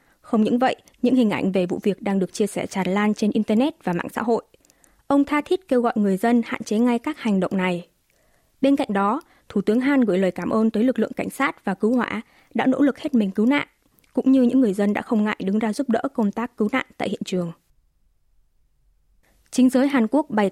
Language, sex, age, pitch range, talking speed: Vietnamese, female, 20-39, 200-255 Hz, 245 wpm